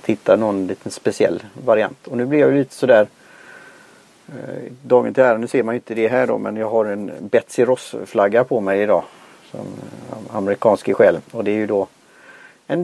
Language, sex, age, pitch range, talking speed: Swedish, male, 30-49, 110-135 Hz, 205 wpm